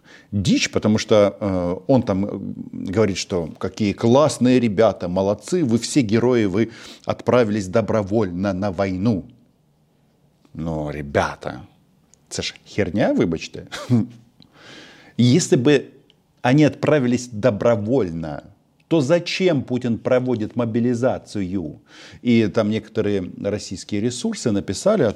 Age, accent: 50-69, native